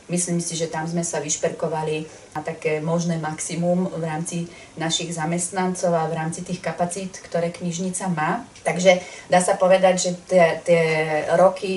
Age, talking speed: 30-49, 155 wpm